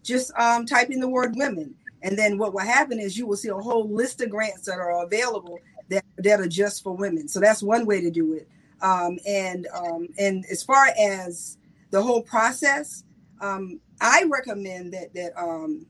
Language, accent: English, American